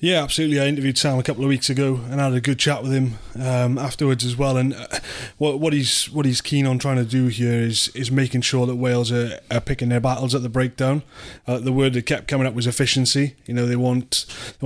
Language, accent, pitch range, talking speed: English, British, 120-140 Hz, 260 wpm